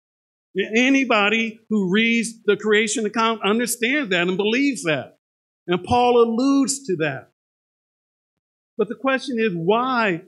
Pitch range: 175-220 Hz